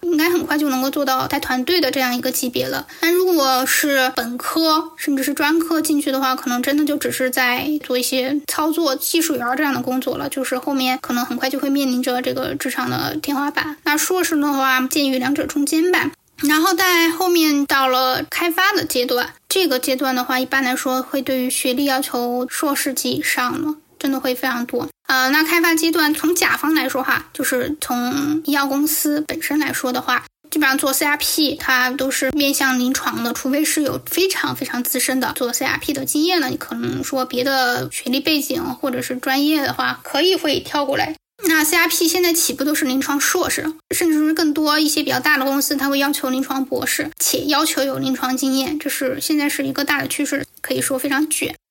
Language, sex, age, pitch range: English, female, 10-29, 260-310 Hz